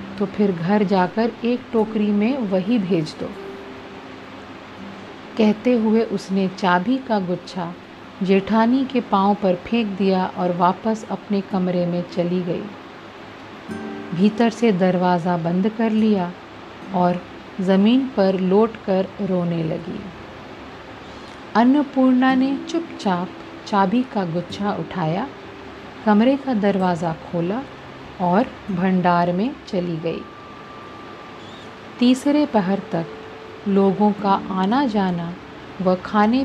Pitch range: 185-235 Hz